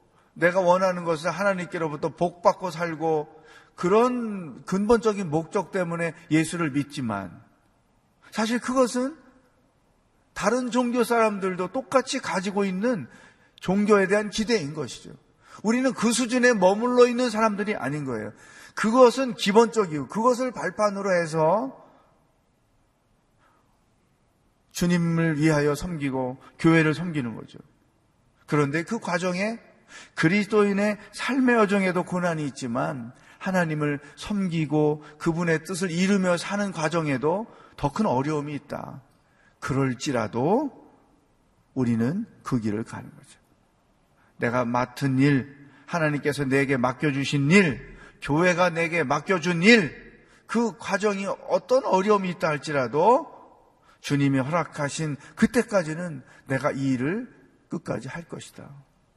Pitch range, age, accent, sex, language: 145-210 Hz, 40-59, native, male, Korean